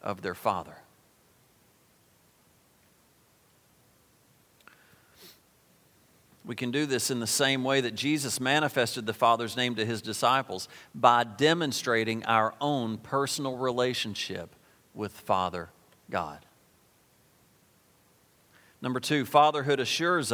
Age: 50-69